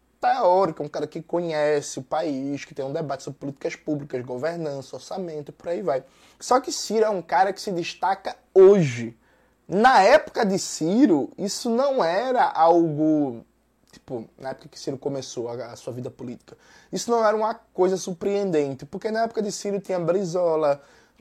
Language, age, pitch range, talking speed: Portuguese, 20-39, 150-200 Hz, 175 wpm